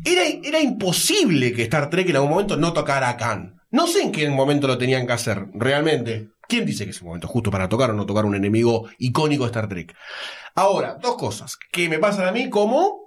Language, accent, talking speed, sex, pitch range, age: Spanish, Argentinian, 230 wpm, male, 135-225 Hz, 30-49